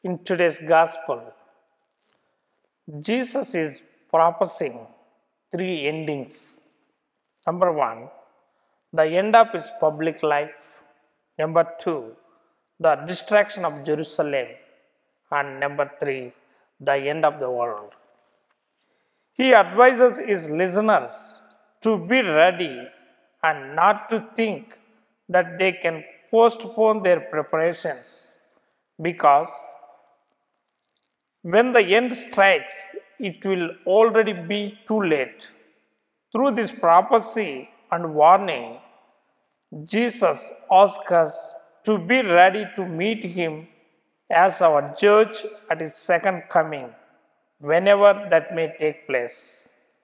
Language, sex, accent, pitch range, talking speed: English, male, Indian, 160-215 Hz, 100 wpm